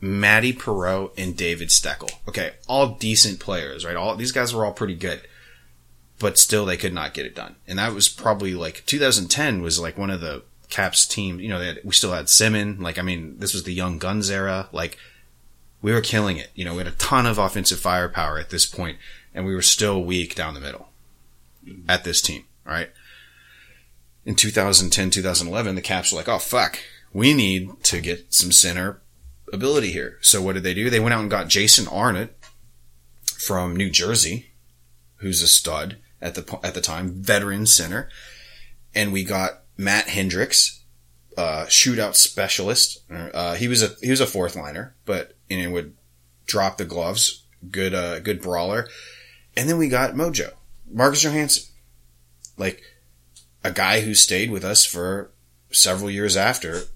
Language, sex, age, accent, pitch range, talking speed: English, male, 30-49, American, 75-105 Hz, 180 wpm